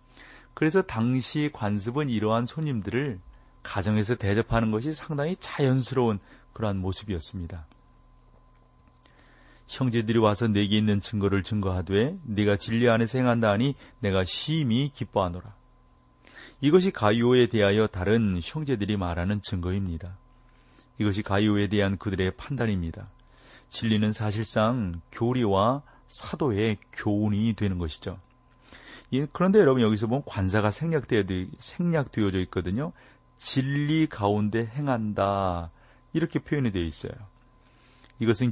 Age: 40-59